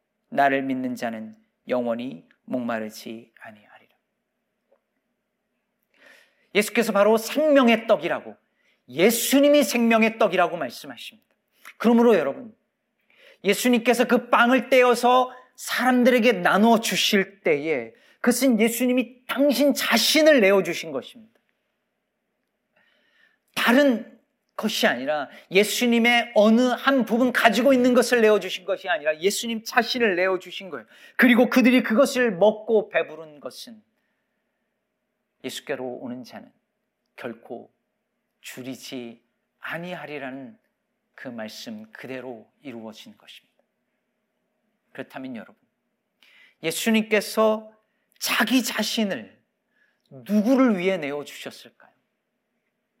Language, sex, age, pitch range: Korean, male, 40-59, 190-245 Hz